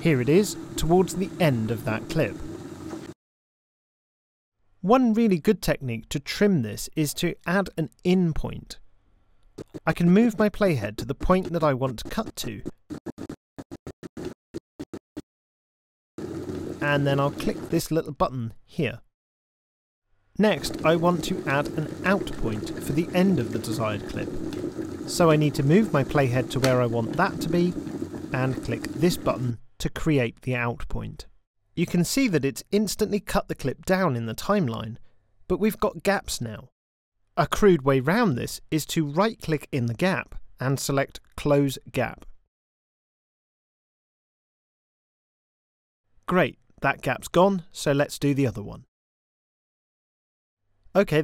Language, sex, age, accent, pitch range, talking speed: English, male, 40-59, British, 120-180 Hz, 150 wpm